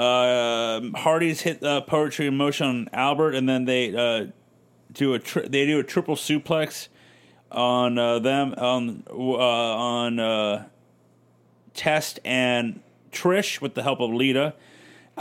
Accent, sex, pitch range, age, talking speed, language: American, male, 125-155 Hz, 30-49, 145 wpm, English